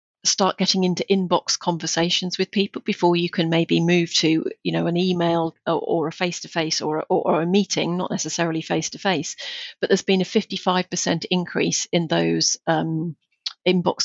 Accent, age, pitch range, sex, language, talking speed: British, 40-59, 170-215 Hz, female, English, 165 wpm